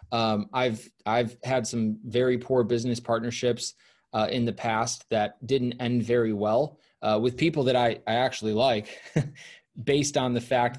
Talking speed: 165 wpm